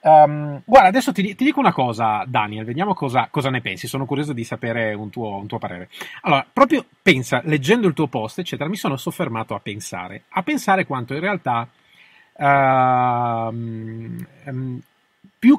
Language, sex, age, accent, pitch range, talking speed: Italian, male, 30-49, native, 120-175 Hz, 155 wpm